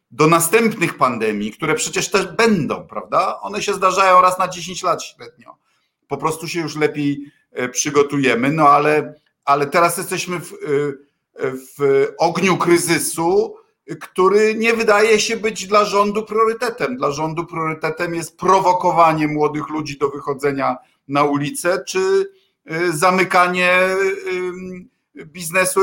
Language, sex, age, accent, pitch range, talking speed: Polish, male, 50-69, native, 140-185 Hz, 125 wpm